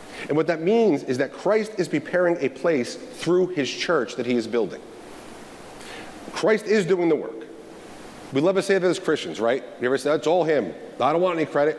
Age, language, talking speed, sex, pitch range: 40-59, English, 215 wpm, male, 150-205 Hz